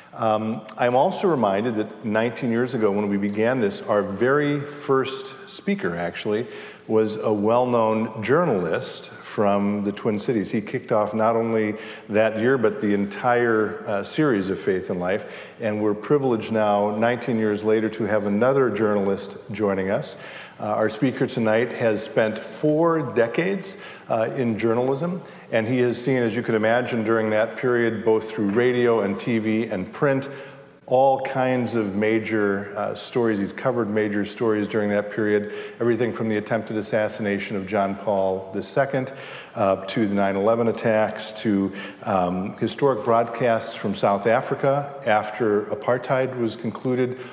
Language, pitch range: English, 105-125 Hz